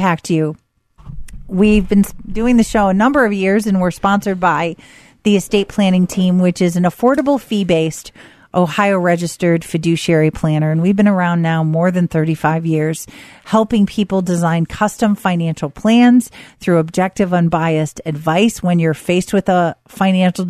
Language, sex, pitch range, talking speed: English, female, 165-200 Hz, 150 wpm